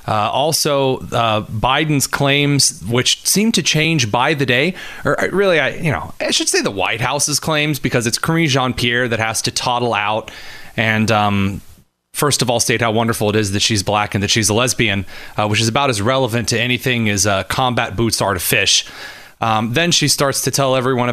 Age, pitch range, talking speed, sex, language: 30-49, 115-170 Hz, 210 wpm, male, English